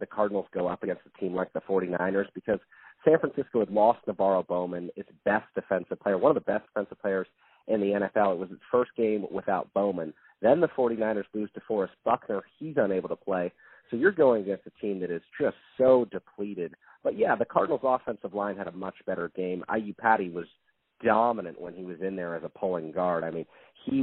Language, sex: English, male